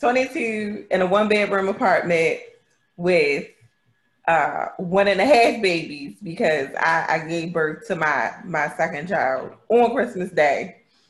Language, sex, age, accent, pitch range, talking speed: English, female, 30-49, American, 160-230 Hz, 140 wpm